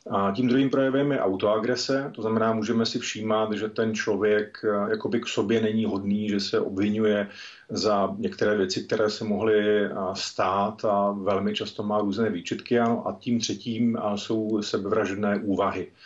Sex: male